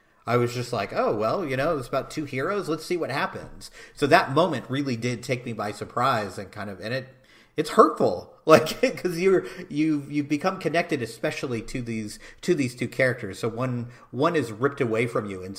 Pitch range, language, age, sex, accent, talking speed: 110-150 Hz, English, 40-59, male, American, 210 wpm